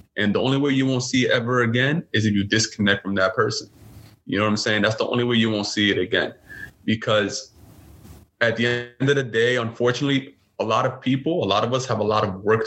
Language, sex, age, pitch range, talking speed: English, male, 20-39, 105-130 Hz, 245 wpm